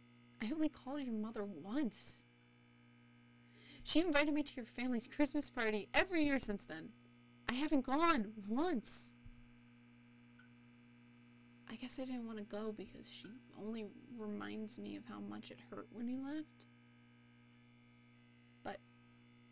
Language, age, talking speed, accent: English, 30-49, 130 wpm, American